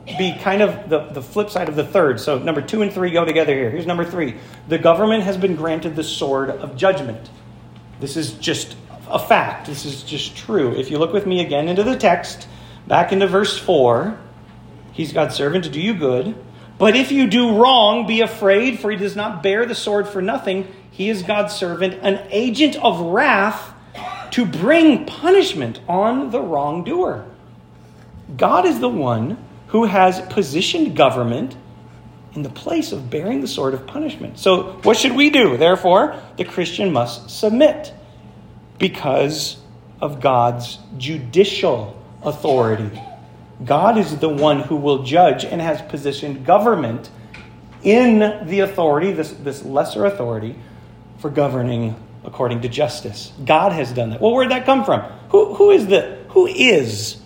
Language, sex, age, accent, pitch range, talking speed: English, male, 40-59, American, 140-210 Hz, 170 wpm